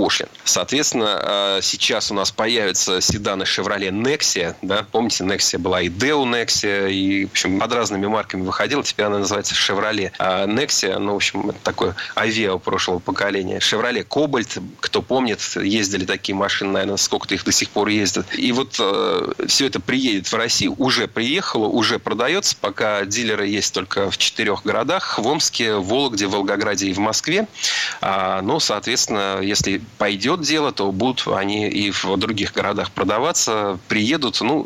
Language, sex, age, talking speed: Russian, male, 30-49, 160 wpm